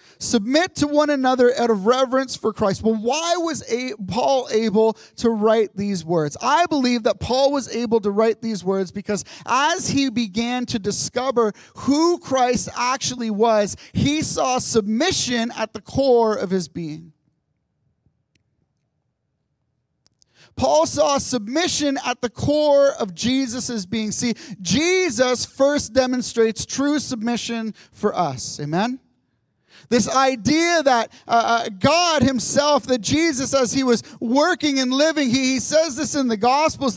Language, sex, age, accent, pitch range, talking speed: English, male, 30-49, American, 230-290 Hz, 145 wpm